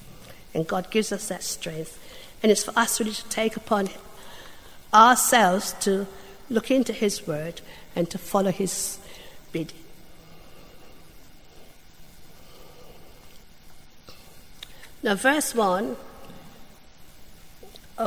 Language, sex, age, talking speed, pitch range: English, female, 50-69, 90 wpm, 180-220 Hz